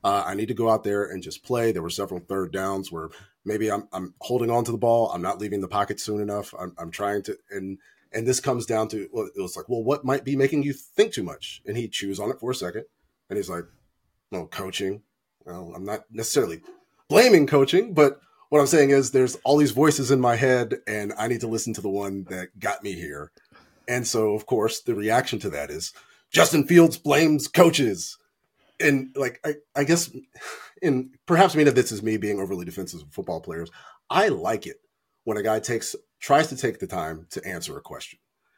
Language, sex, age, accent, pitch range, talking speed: English, male, 30-49, American, 105-145 Hz, 225 wpm